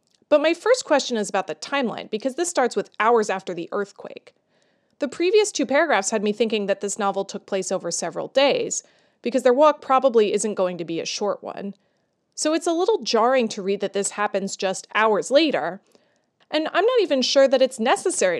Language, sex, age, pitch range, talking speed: English, female, 30-49, 195-275 Hz, 205 wpm